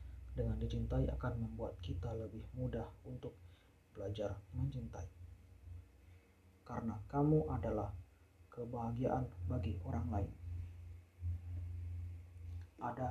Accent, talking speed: native, 80 wpm